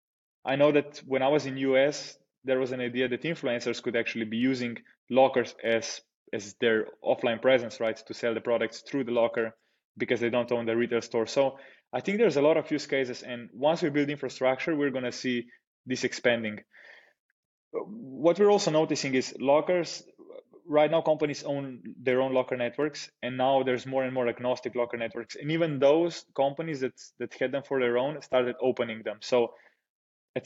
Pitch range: 120-140 Hz